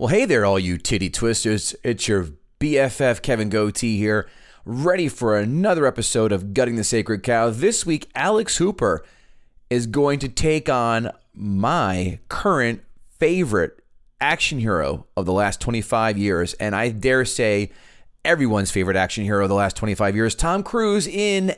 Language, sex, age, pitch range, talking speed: English, male, 30-49, 105-140 Hz, 160 wpm